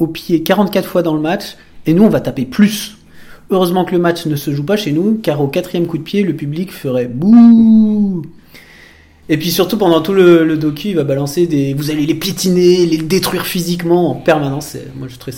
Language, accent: French, French